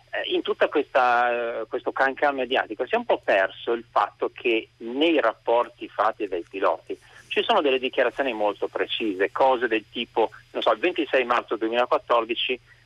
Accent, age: native, 40-59